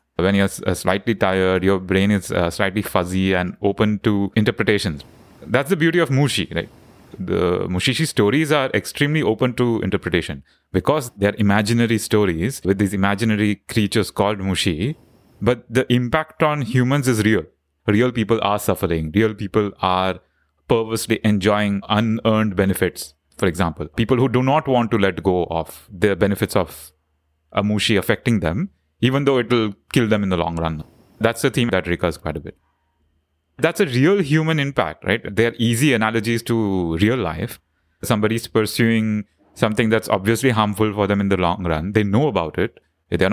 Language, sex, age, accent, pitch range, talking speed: English, male, 30-49, Indian, 95-120 Hz, 170 wpm